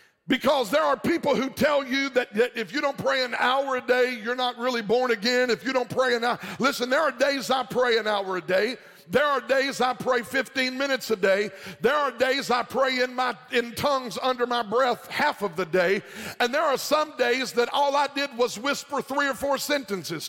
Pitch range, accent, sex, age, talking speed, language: 240-280 Hz, American, male, 50-69, 225 wpm, English